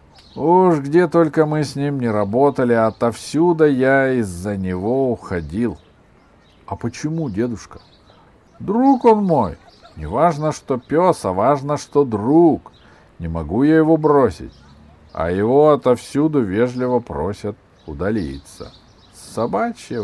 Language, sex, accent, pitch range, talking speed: Russian, male, native, 105-150 Hz, 115 wpm